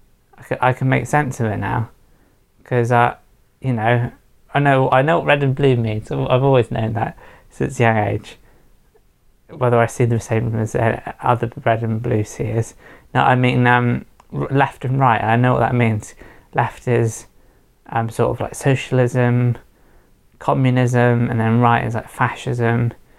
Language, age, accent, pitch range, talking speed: English, 20-39, British, 115-125 Hz, 170 wpm